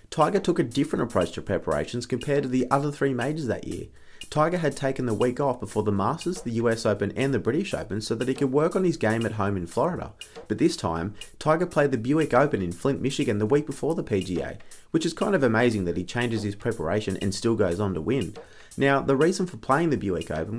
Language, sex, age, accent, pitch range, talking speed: English, male, 30-49, Australian, 105-145 Hz, 240 wpm